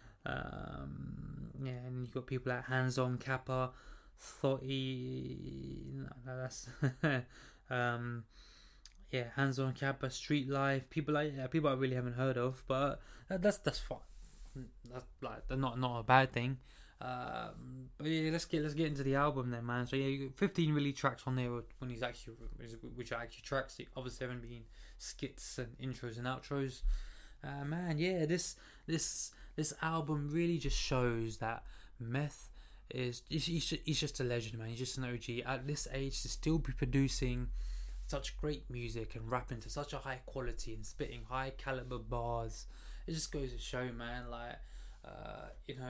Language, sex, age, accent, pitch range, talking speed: English, male, 20-39, British, 120-145 Hz, 175 wpm